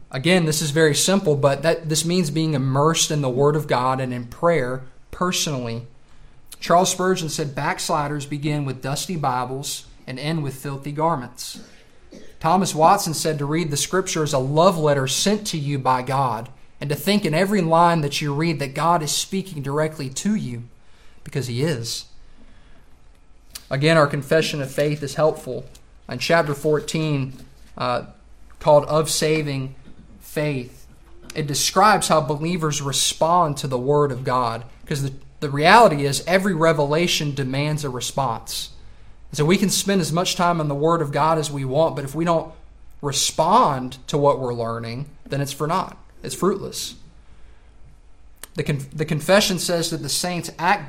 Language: English